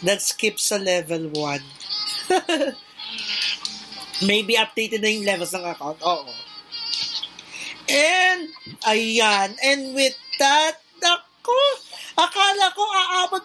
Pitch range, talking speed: 245-320 Hz, 100 wpm